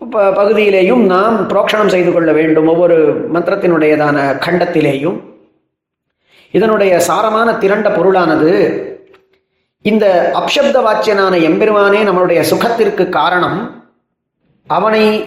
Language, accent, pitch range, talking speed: Tamil, native, 175-230 Hz, 85 wpm